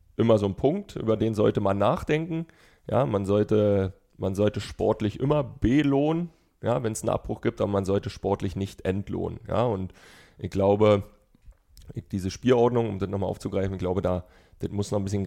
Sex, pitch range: male, 95-105 Hz